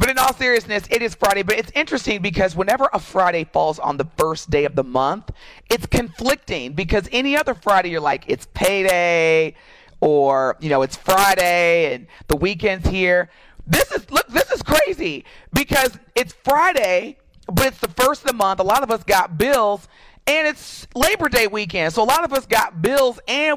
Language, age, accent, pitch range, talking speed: English, 40-59, American, 145-215 Hz, 195 wpm